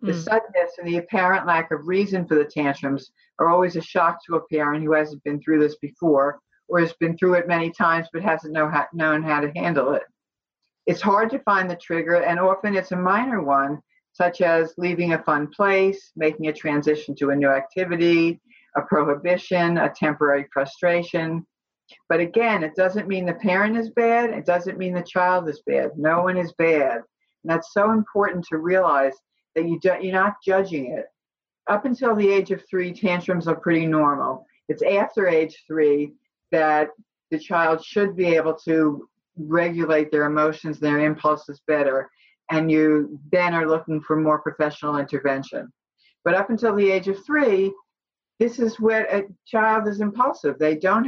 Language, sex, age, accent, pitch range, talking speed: English, female, 50-69, American, 155-190 Hz, 180 wpm